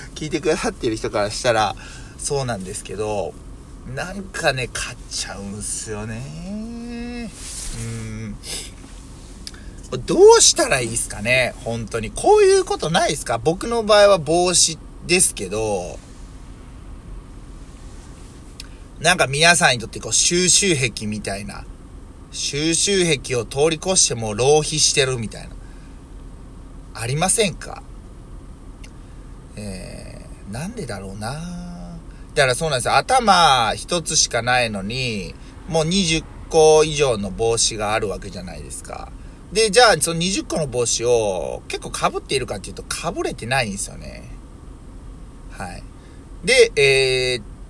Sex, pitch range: male, 105-175 Hz